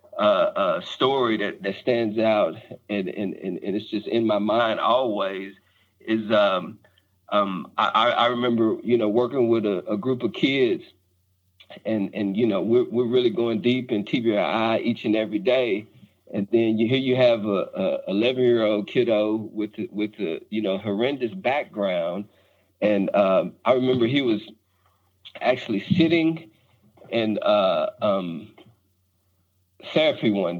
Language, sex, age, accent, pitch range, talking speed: English, male, 50-69, American, 100-120 Hz, 155 wpm